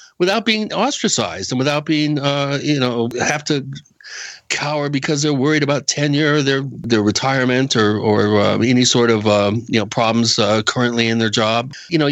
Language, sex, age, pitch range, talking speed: English, male, 60-79, 120-150 Hz, 185 wpm